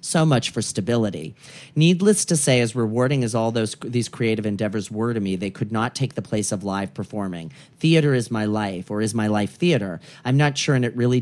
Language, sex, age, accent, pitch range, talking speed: English, male, 40-59, American, 105-130 Hz, 225 wpm